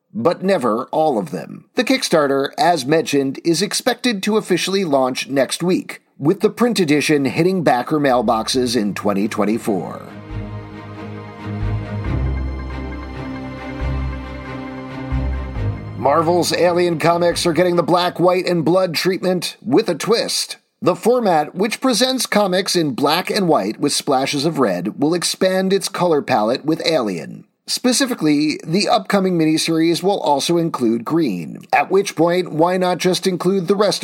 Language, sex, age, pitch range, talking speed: English, male, 40-59, 130-190 Hz, 135 wpm